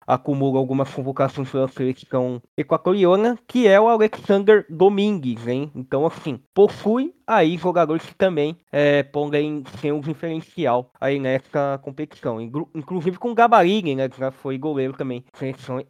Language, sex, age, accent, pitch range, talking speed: Portuguese, male, 20-39, Brazilian, 140-180 Hz, 140 wpm